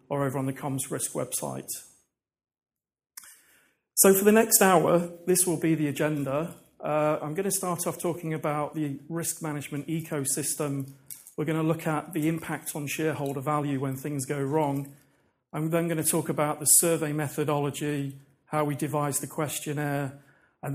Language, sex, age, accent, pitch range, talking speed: English, male, 40-59, British, 140-165 Hz, 170 wpm